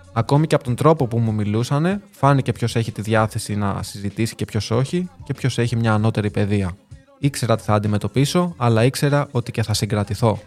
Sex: male